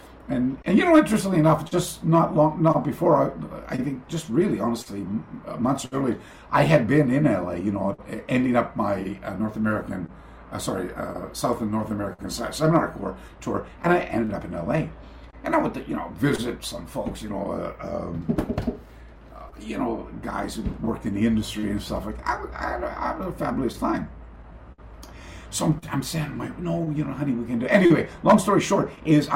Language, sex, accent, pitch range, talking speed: English, male, American, 110-155 Hz, 195 wpm